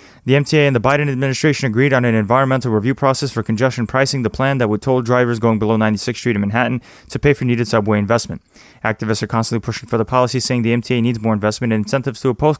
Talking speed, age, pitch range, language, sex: 240 wpm, 20-39, 115-135 Hz, English, male